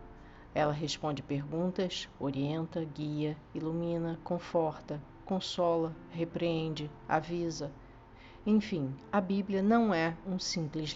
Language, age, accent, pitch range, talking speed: Portuguese, 50-69, Brazilian, 155-190 Hz, 95 wpm